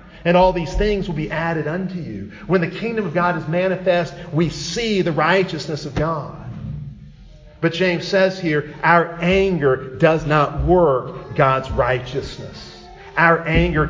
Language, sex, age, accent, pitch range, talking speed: English, male, 40-59, American, 145-185 Hz, 150 wpm